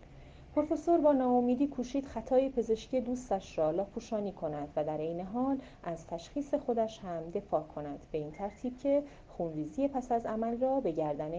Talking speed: 170 wpm